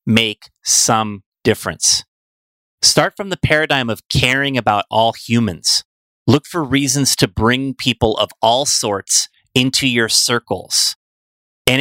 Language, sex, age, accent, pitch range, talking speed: English, male, 30-49, American, 105-135 Hz, 125 wpm